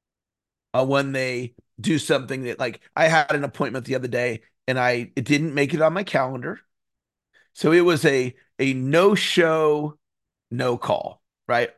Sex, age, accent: male, 40-59, American